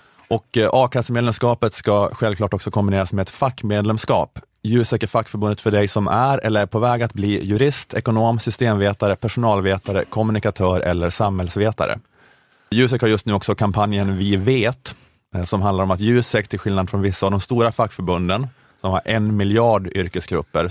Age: 30-49